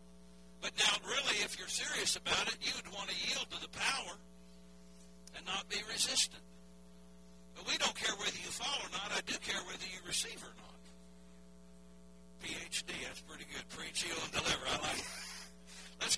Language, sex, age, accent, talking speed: English, male, 60-79, American, 175 wpm